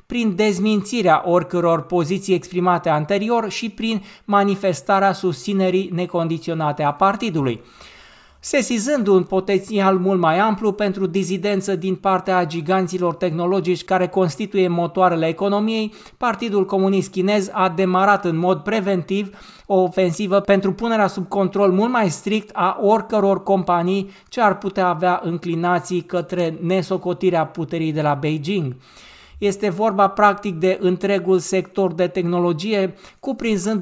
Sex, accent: male, native